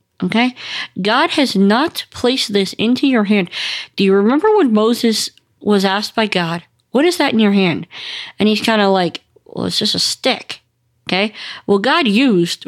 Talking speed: 180 wpm